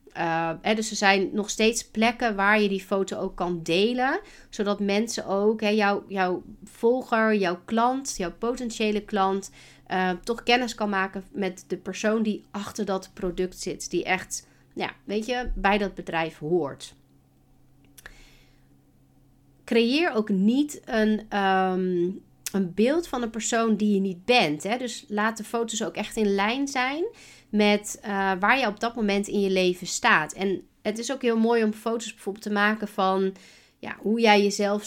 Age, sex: 40-59, female